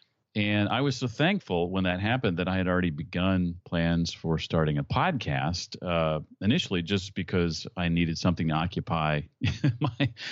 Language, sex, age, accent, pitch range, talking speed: English, male, 40-59, American, 80-95 Hz, 165 wpm